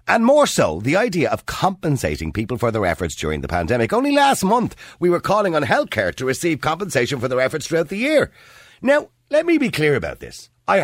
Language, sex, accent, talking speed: English, male, Irish, 215 wpm